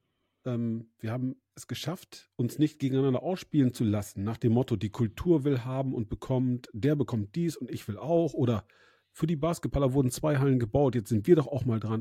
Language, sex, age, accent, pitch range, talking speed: German, male, 40-59, German, 115-140 Hz, 205 wpm